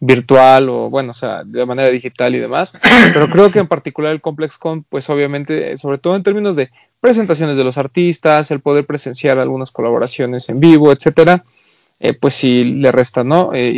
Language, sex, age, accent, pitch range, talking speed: Spanish, male, 30-49, Mexican, 135-165 Hz, 190 wpm